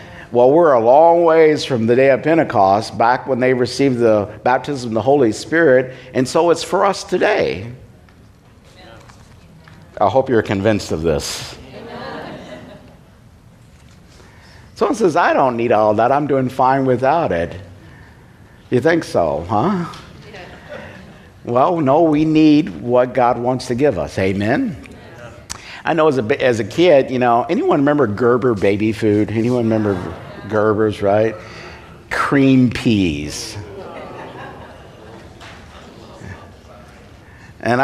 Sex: male